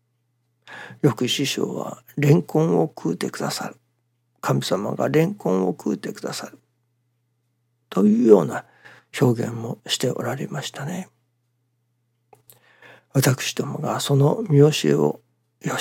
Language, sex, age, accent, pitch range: Japanese, male, 60-79, native, 120-145 Hz